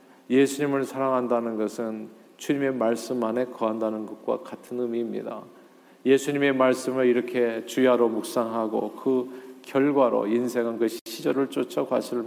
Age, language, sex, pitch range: 40-59, Korean, male, 115-140 Hz